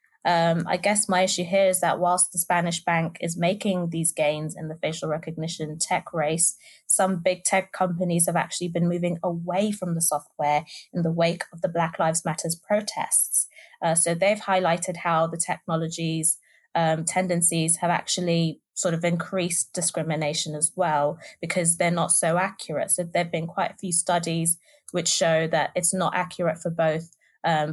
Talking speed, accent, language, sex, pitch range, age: 175 wpm, British, English, female, 165-190 Hz, 20-39